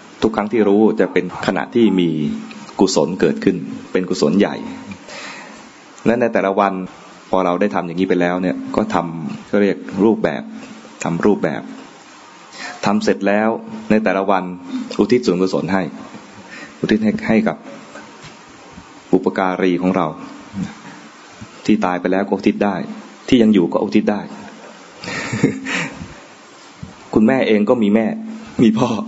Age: 20-39